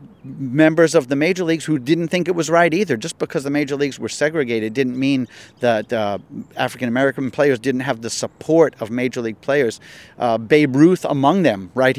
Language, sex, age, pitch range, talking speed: English, male, 50-69, 115-140 Hz, 200 wpm